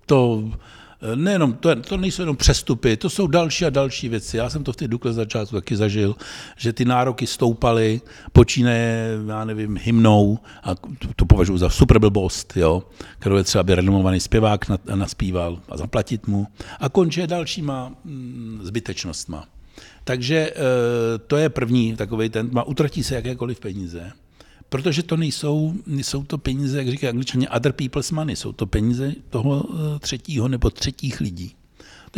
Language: Czech